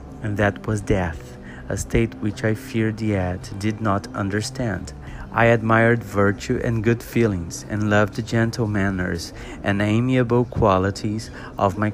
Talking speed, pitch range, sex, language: 145 wpm, 100-115 Hz, male, Portuguese